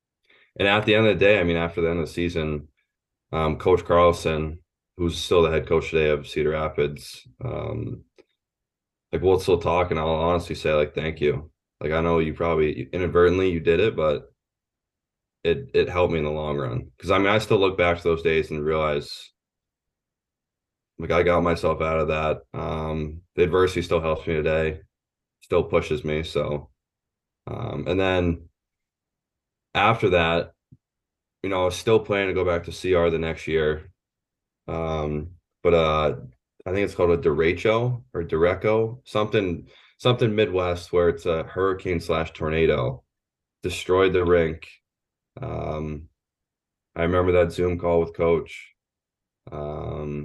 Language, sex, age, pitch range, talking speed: English, male, 20-39, 75-90 Hz, 165 wpm